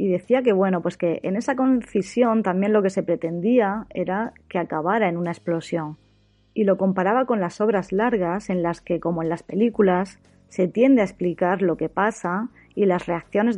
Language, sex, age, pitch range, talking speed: Spanish, female, 20-39, 175-225 Hz, 180 wpm